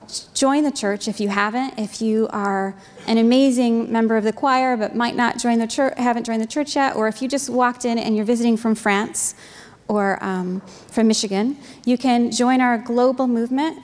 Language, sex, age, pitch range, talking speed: English, female, 20-39, 220-265 Hz, 205 wpm